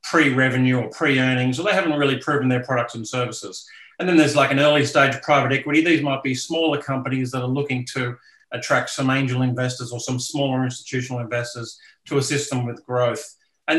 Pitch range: 125-150 Hz